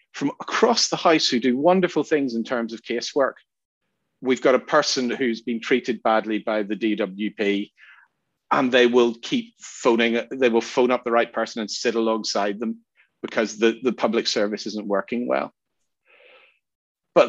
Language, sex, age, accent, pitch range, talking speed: English, male, 40-59, British, 105-130 Hz, 165 wpm